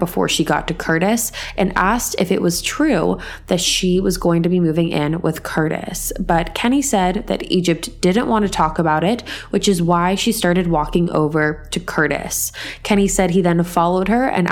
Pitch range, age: 160-195 Hz, 20-39